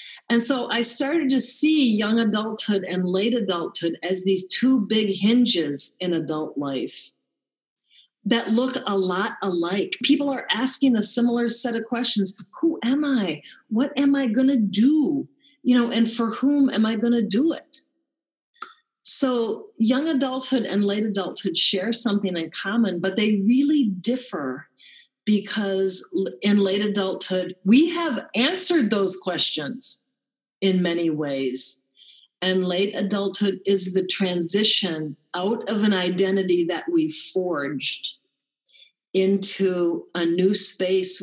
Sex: female